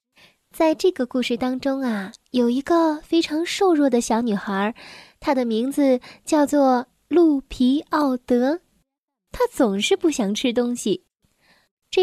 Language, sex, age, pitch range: Chinese, female, 10-29, 245-330 Hz